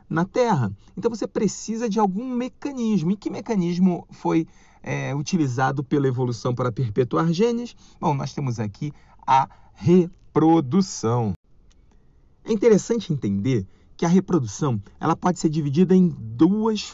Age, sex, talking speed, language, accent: 40-59, male, 125 wpm, Portuguese, Brazilian